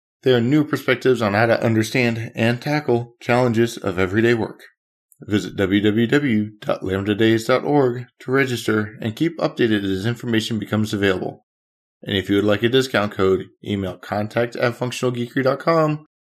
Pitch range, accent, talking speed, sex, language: 100-125 Hz, American, 135 wpm, male, English